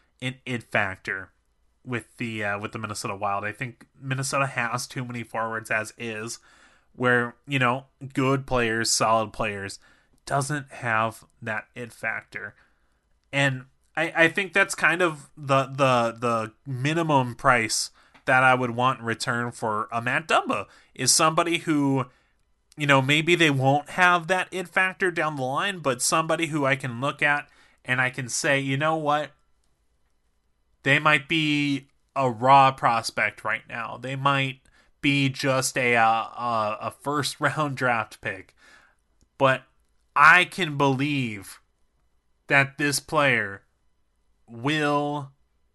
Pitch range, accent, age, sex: 115-145 Hz, American, 30-49, male